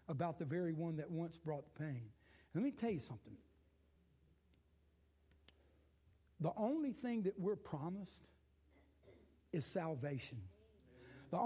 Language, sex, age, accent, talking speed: English, male, 60-79, American, 120 wpm